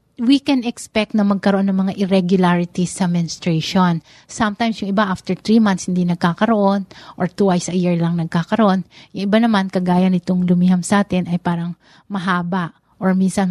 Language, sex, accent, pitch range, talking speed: Filipino, female, native, 175-205 Hz, 165 wpm